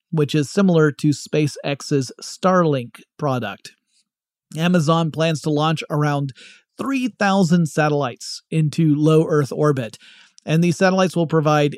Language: English